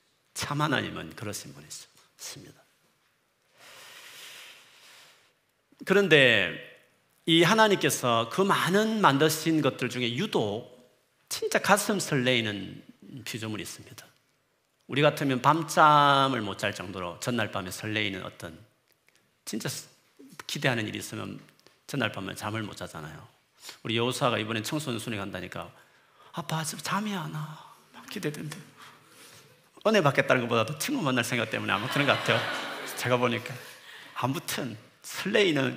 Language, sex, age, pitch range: Korean, male, 40-59, 115-170 Hz